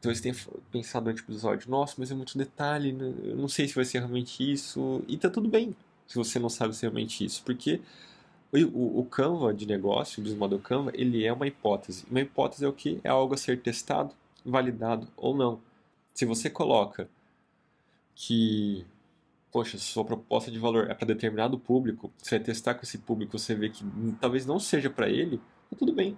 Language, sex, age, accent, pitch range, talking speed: Portuguese, male, 20-39, Brazilian, 110-135 Hz, 200 wpm